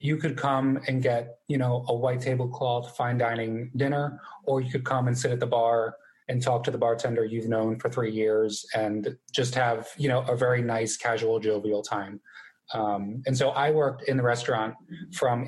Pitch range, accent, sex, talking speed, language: 115-130 Hz, American, male, 200 wpm, English